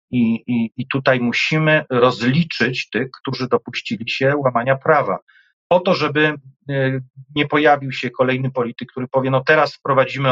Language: Polish